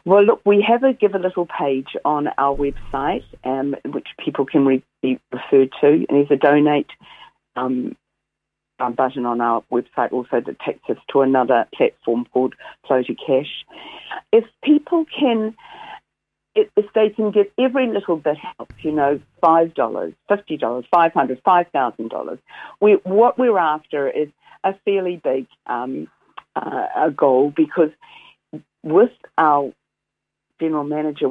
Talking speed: 140 wpm